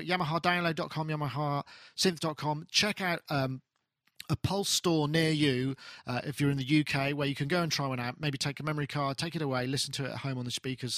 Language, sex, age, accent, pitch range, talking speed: English, male, 40-59, British, 140-180 Hz, 220 wpm